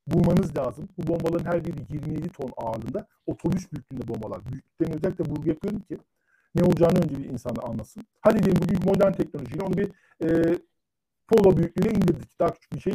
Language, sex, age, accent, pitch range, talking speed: Turkish, male, 50-69, native, 165-215 Hz, 180 wpm